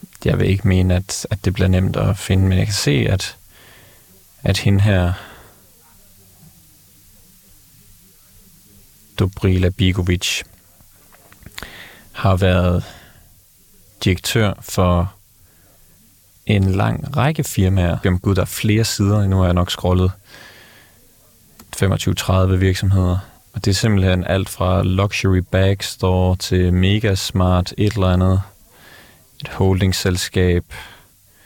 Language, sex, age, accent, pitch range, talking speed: Danish, male, 30-49, native, 90-105 Hz, 110 wpm